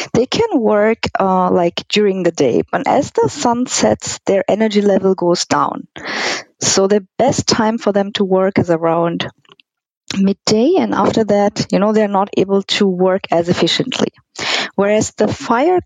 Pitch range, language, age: 185-230 Hz, German, 20-39